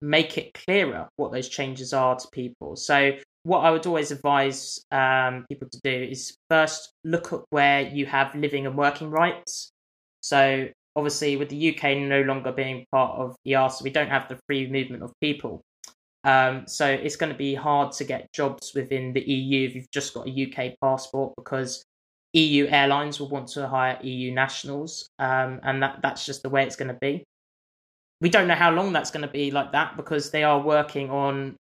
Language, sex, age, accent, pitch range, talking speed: English, male, 20-39, British, 130-150 Hz, 200 wpm